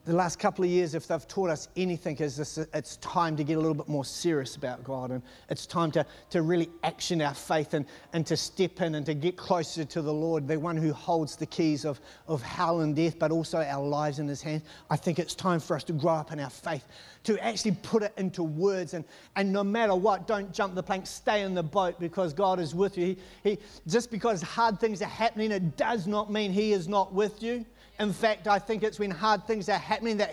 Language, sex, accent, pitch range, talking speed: English, male, Australian, 170-215 Hz, 250 wpm